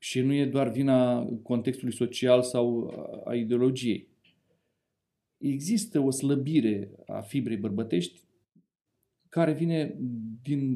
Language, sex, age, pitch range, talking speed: Romanian, male, 40-59, 115-155 Hz, 105 wpm